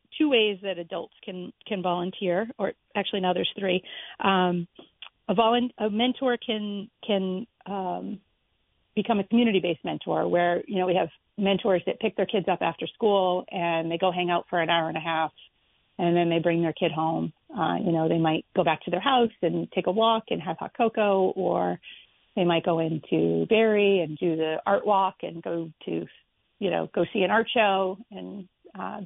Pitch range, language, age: 175-210 Hz, English, 40-59